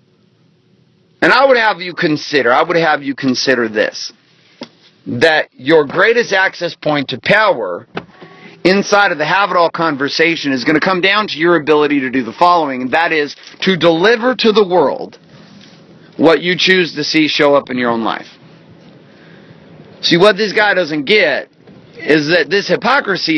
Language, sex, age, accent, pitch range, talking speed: English, male, 40-59, American, 150-190 Hz, 165 wpm